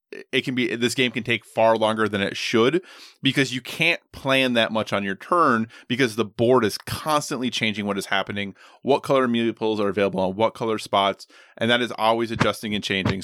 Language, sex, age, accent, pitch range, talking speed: English, male, 20-39, American, 105-125 Hz, 210 wpm